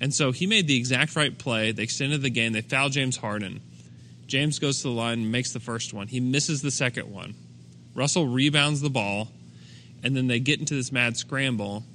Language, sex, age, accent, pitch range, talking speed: English, male, 20-39, American, 110-135 Hz, 215 wpm